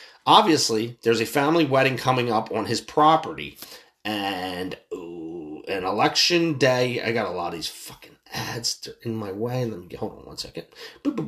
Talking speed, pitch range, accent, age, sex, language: 175 wpm, 110-155 Hz, American, 30-49, male, English